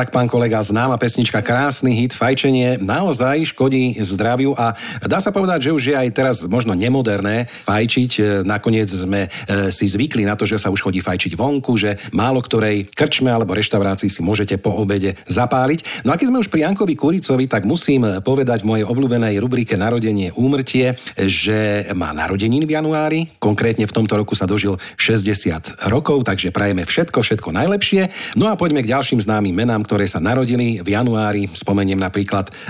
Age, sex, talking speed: 50-69, male, 175 wpm